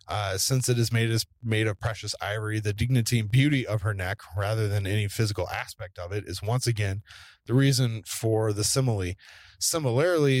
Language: English